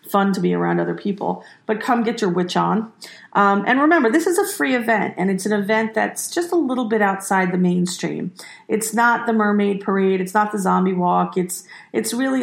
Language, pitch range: English, 185-225 Hz